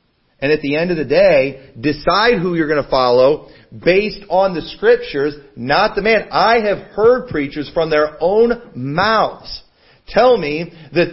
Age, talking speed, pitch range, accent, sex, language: 40-59, 165 wpm, 145-195 Hz, American, male, English